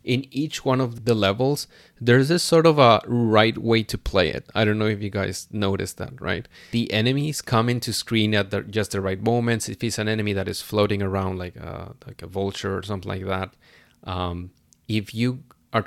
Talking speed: 215 wpm